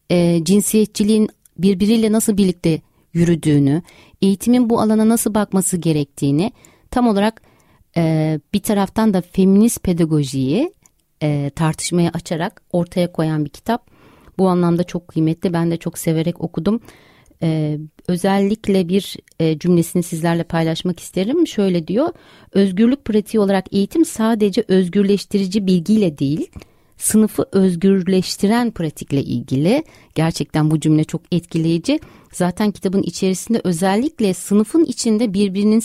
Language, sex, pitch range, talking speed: Turkish, female, 165-205 Hz, 110 wpm